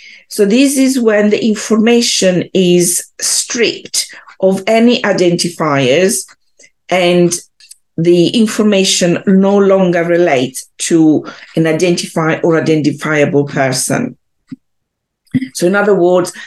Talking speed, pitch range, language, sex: 100 wpm, 165-205 Hz, English, female